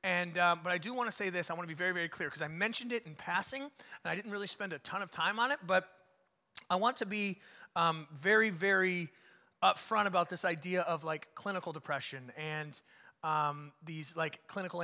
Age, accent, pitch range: 30-49, American, 160-190 Hz